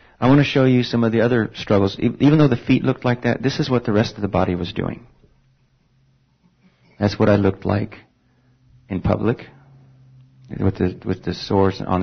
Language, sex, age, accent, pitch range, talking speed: English, male, 40-59, American, 95-105 Hz, 200 wpm